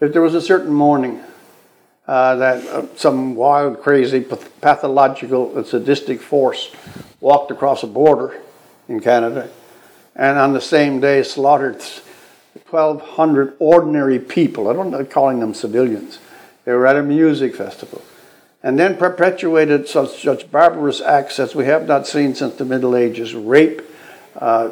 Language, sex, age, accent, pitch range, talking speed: English, male, 60-79, American, 135-170 Hz, 135 wpm